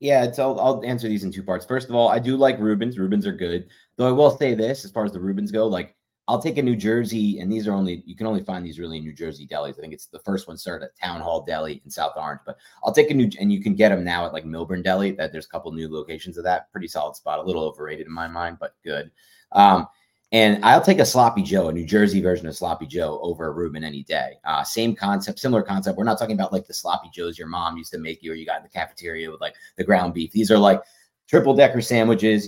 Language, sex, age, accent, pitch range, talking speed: English, male, 30-49, American, 90-115 Hz, 285 wpm